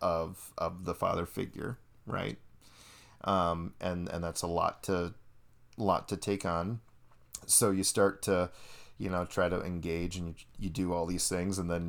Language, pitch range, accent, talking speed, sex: English, 85-105 Hz, American, 180 wpm, male